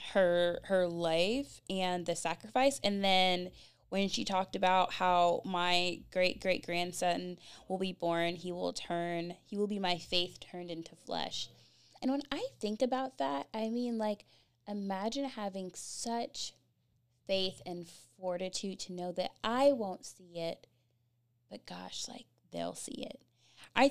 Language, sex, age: English, female, 10-29